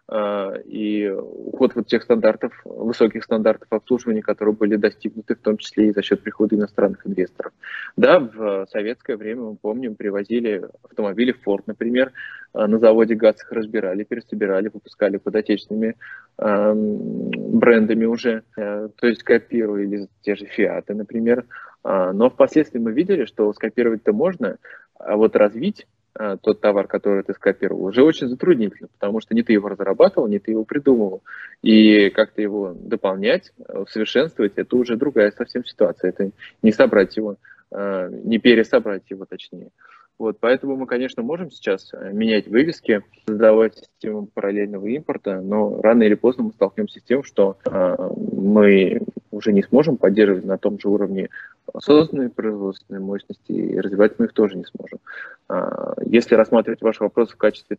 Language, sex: Russian, male